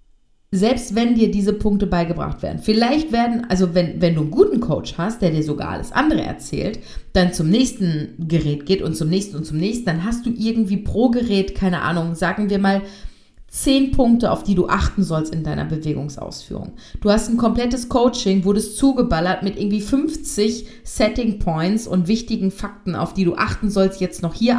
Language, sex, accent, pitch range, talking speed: German, female, German, 175-230 Hz, 190 wpm